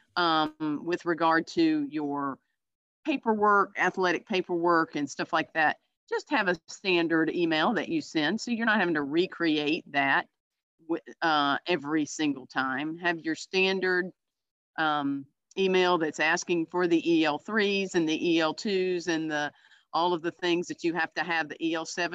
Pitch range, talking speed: 150-190 Hz, 155 wpm